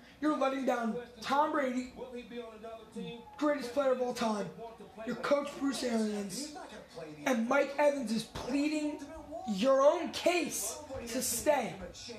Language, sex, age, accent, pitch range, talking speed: English, male, 20-39, American, 245-300 Hz, 120 wpm